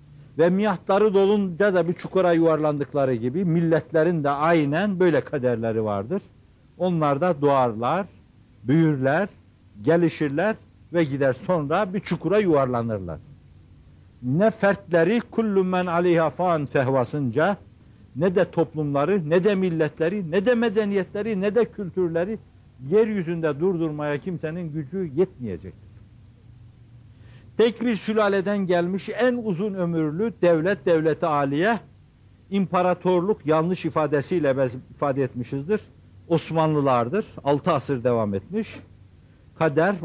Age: 60-79